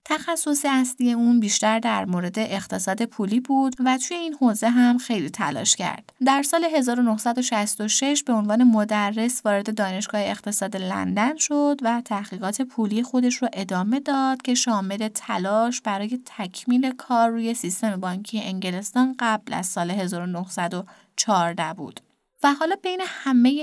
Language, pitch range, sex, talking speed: Persian, 200-255 Hz, female, 135 wpm